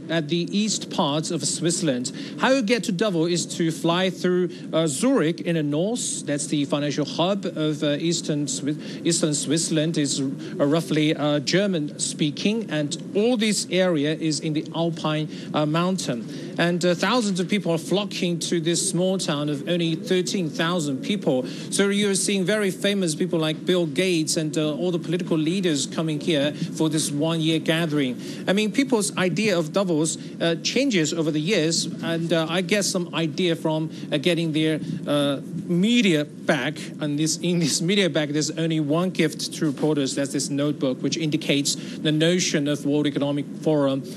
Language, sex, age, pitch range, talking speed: English, male, 40-59, 155-185 Hz, 175 wpm